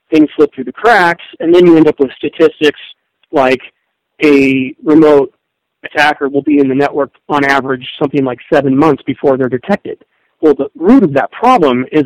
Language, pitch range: English, 135-165 Hz